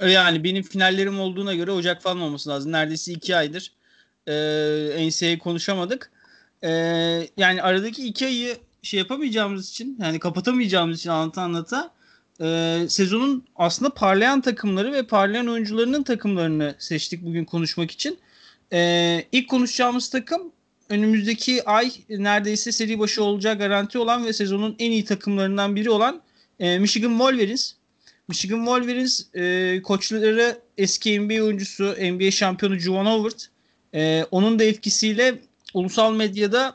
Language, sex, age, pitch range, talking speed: Turkish, male, 30-49, 170-225 Hz, 120 wpm